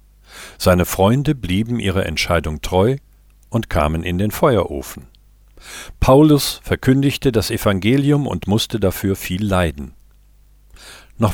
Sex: male